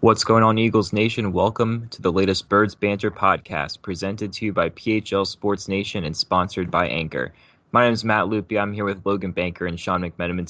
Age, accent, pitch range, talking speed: 20-39, American, 90-105 Hz, 205 wpm